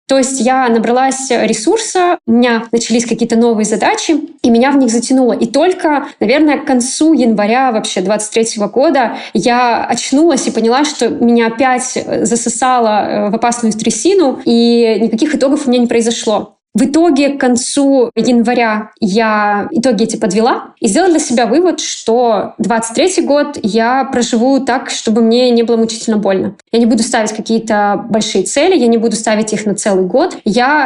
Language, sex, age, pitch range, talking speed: Russian, female, 20-39, 225-270 Hz, 165 wpm